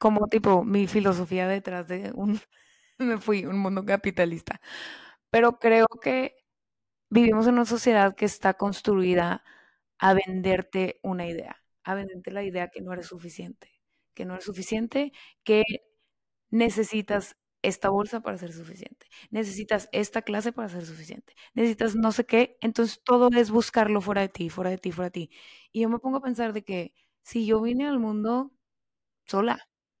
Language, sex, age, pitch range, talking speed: Spanish, female, 20-39, 190-230 Hz, 165 wpm